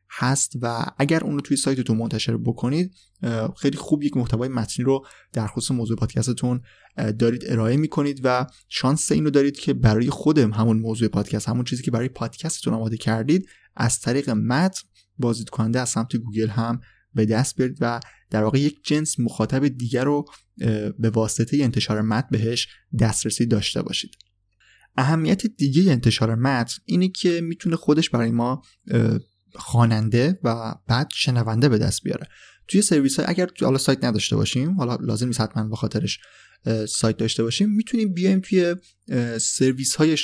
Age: 20-39